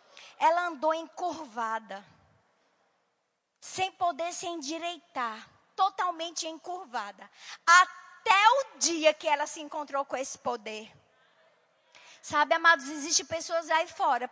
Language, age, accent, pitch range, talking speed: Portuguese, 20-39, Brazilian, 260-320 Hz, 105 wpm